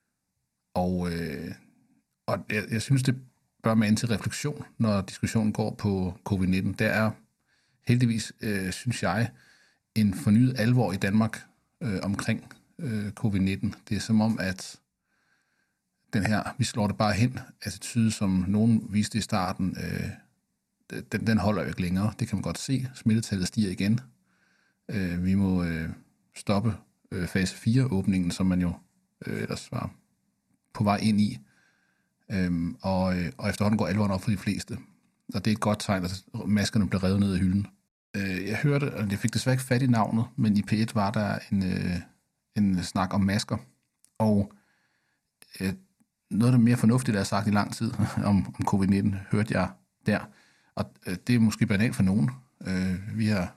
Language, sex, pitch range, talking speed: Danish, male, 95-115 Hz, 170 wpm